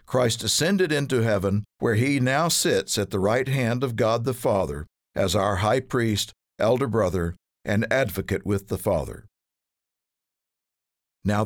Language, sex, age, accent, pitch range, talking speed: English, male, 50-69, American, 100-135 Hz, 145 wpm